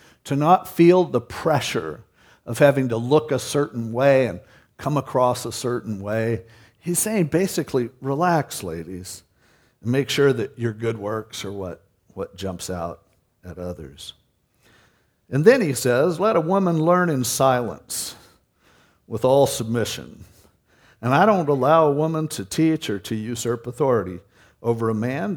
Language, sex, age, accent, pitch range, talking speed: English, male, 50-69, American, 115-145 Hz, 150 wpm